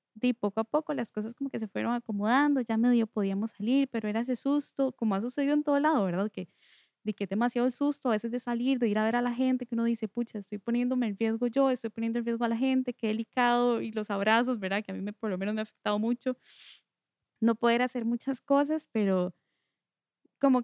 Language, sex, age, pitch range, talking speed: Spanish, female, 10-29, 205-250 Hz, 245 wpm